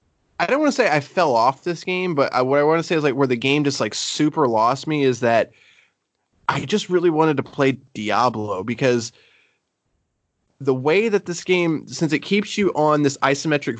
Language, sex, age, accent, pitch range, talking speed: English, male, 20-39, American, 125-155 Hz, 210 wpm